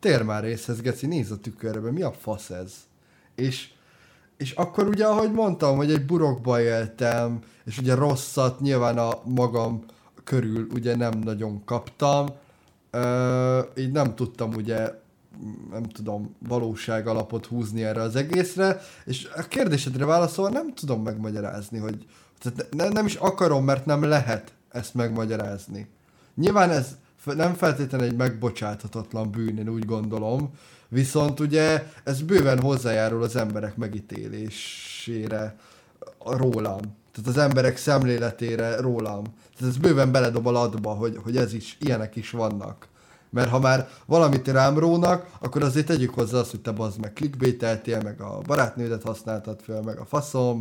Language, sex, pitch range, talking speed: Hungarian, male, 110-145 Hz, 145 wpm